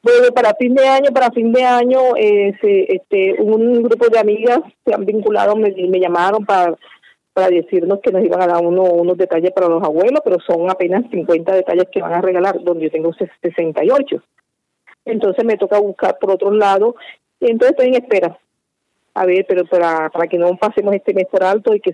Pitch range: 175-235 Hz